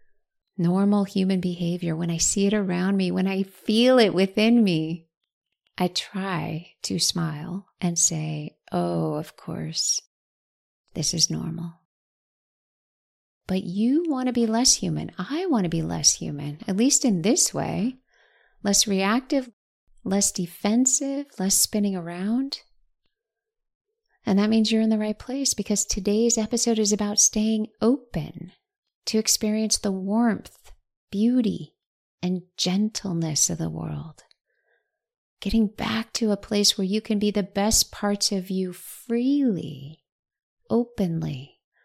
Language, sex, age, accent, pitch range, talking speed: English, female, 30-49, American, 175-225 Hz, 135 wpm